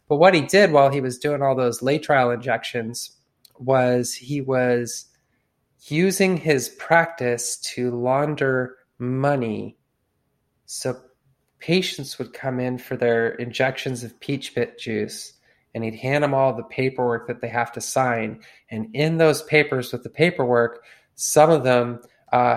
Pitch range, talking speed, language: 120-145 Hz, 150 wpm, English